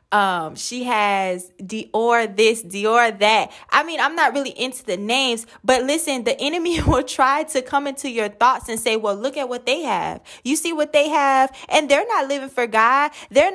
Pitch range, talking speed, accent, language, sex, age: 235-305 Hz, 205 wpm, American, English, female, 20-39